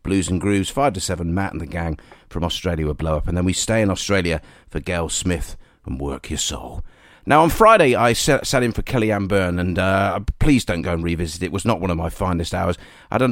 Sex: male